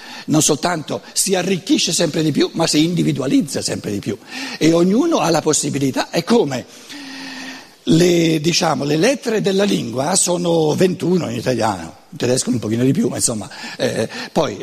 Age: 60-79